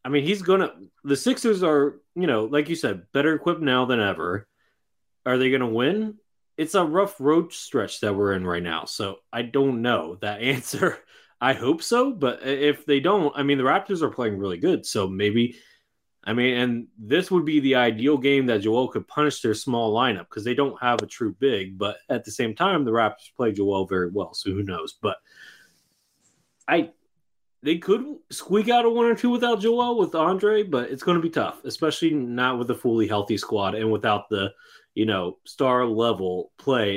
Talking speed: 210 wpm